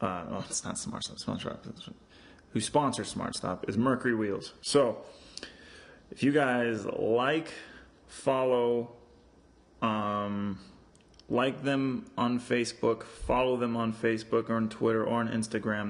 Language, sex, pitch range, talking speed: English, male, 105-120 Hz, 125 wpm